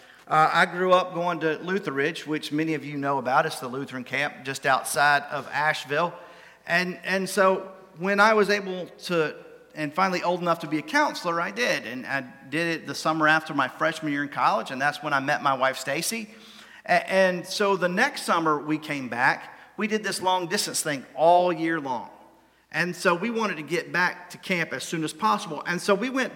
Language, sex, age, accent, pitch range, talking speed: English, male, 40-59, American, 150-190 Hz, 215 wpm